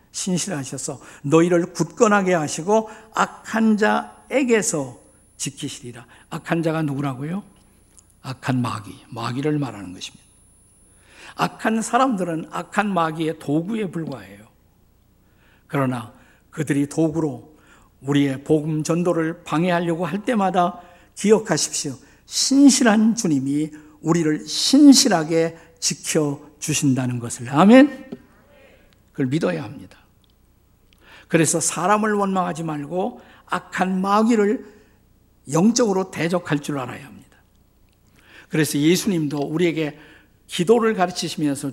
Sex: male